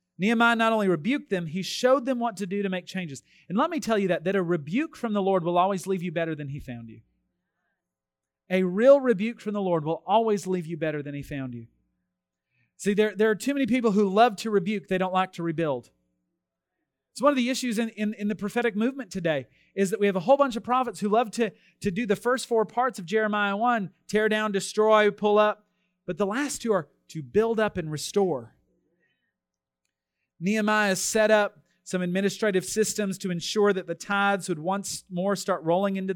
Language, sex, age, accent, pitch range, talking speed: English, male, 30-49, American, 170-215 Hz, 215 wpm